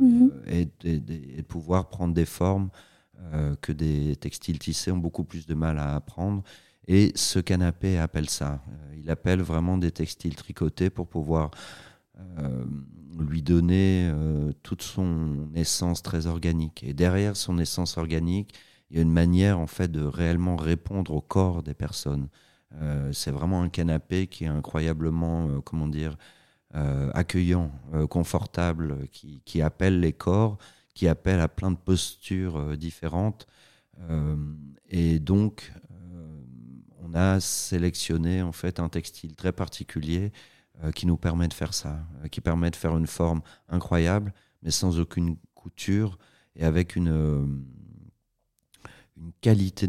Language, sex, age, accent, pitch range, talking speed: French, male, 40-59, French, 80-90 Hz, 155 wpm